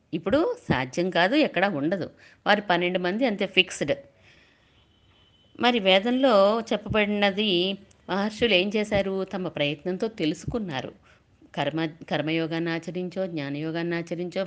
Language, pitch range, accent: Telugu, 165-215 Hz, native